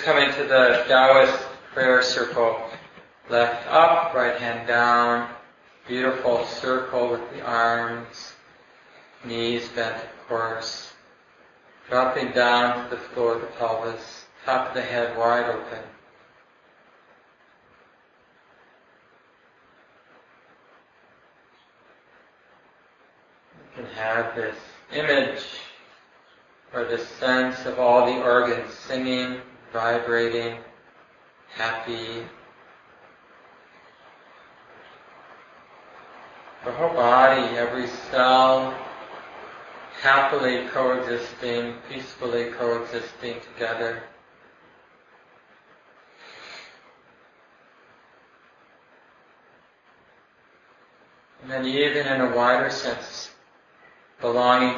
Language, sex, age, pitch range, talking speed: English, male, 40-59, 115-125 Hz, 75 wpm